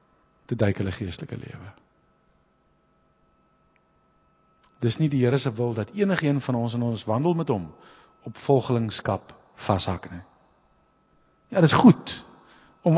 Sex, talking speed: male, 125 wpm